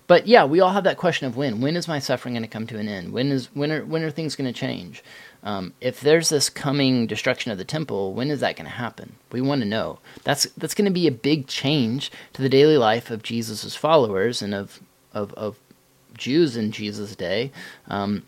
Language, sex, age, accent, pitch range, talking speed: English, male, 30-49, American, 120-160 Hz, 235 wpm